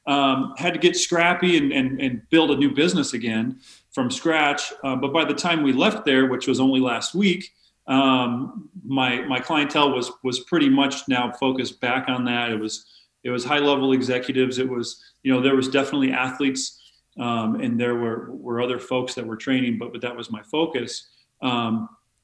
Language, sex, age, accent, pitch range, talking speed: English, male, 40-59, American, 125-150 Hz, 195 wpm